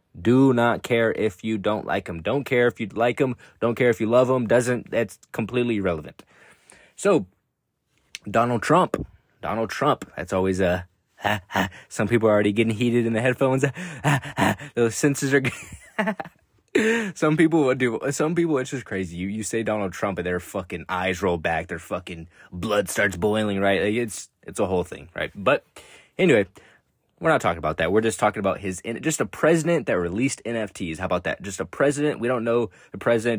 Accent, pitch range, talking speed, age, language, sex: American, 95-125 Hz, 200 wpm, 20-39, English, male